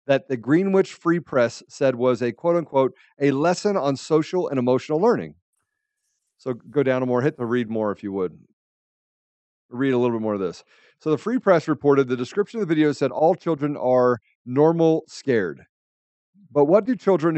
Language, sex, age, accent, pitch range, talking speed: English, male, 40-59, American, 130-190 Hz, 190 wpm